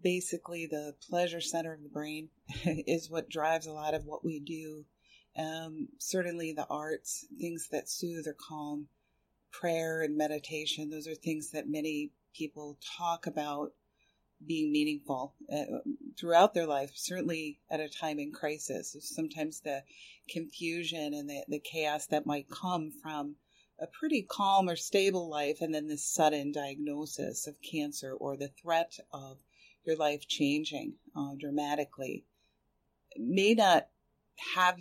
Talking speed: 145 wpm